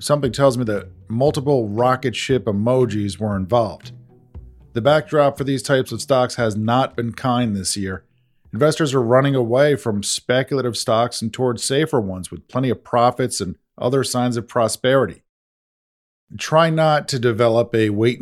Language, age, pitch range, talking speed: English, 40-59, 110-135 Hz, 160 wpm